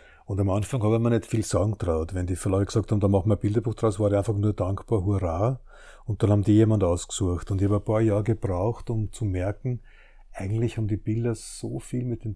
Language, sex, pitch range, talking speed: German, male, 95-115 Hz, 250 wpm